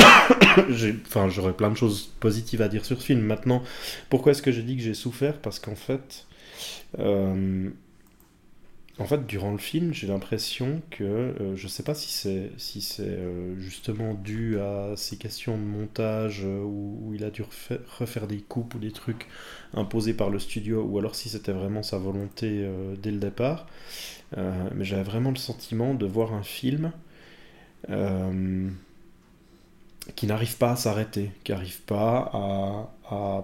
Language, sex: French, male